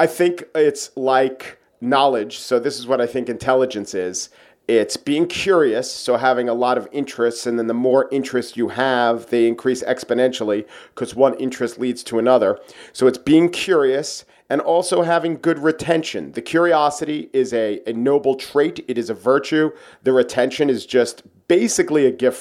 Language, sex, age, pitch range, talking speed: English, male, 40-59, 125-155 Hz, 175 wpm